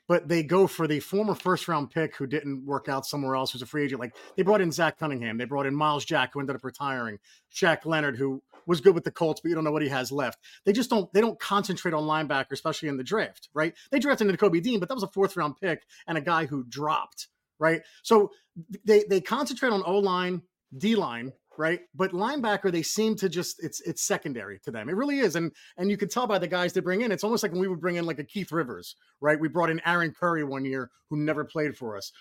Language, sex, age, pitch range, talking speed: English, male, 30-49, 145-195 Hz, 265 wpm